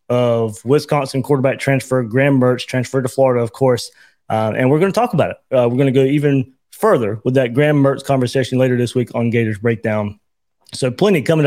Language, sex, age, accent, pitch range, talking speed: English, male, 20-39, American, 125-150 Hz, 210 wpm